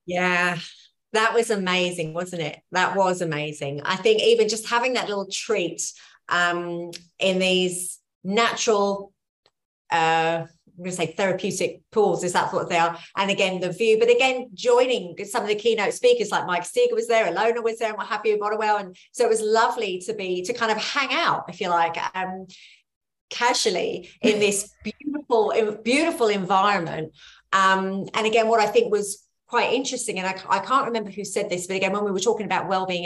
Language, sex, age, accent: English, female, 30-49, British